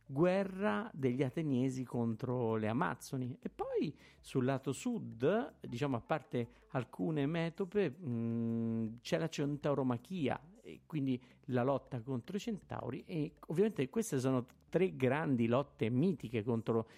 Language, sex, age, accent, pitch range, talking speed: Italian, male, 50-69, native, 115-160 Hz, 125 wpm